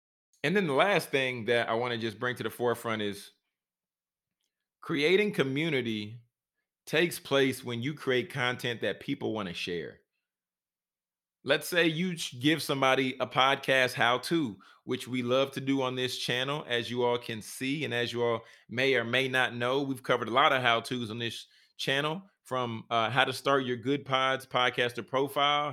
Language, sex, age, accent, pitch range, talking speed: English, male, 30-49, American, 120-150 Hz, 180 wpm